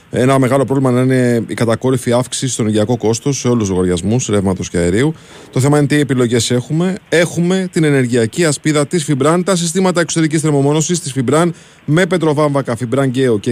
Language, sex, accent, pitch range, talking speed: Greek, male, native, 115-150 Hz, 180 wpm